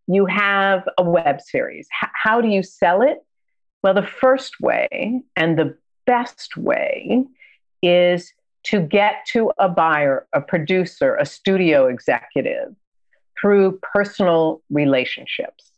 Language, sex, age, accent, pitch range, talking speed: English, female, 50-69, American, 175-230 Hz, 120 wpm